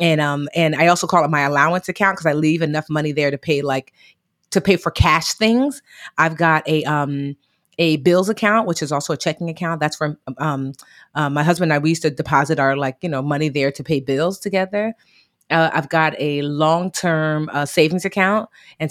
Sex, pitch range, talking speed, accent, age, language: female, 145-175 Hz, 220 wpm, American, 30-49, English